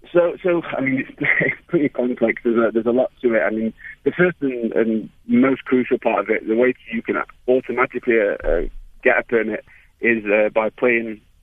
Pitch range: 105-125 Hz